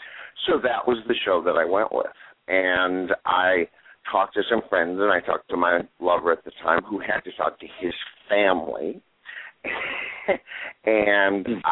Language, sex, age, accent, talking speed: English, male, 60-79, American, 165 wpm